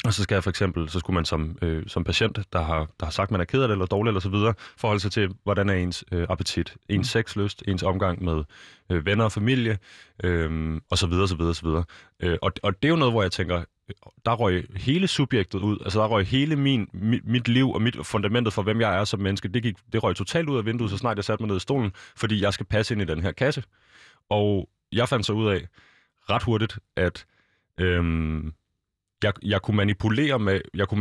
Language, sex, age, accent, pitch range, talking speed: Danish, male, 30-49, native, 90-115 Hz, 245 wpm